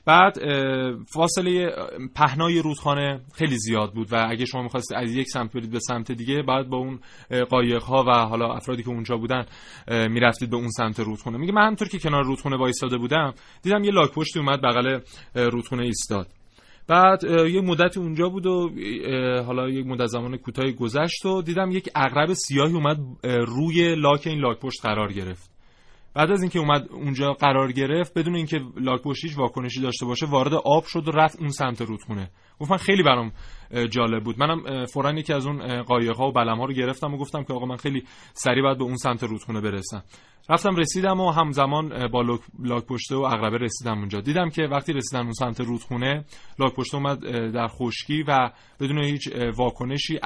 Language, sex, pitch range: Persian, male, 120-150 Hz